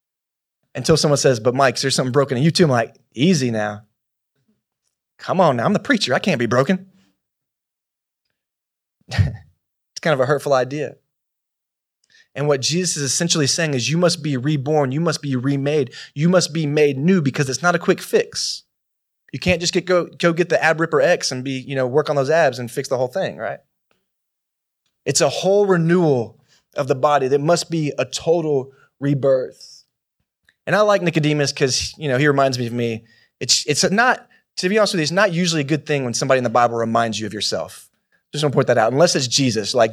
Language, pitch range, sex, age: English, 125-170 Hz, male, 20-39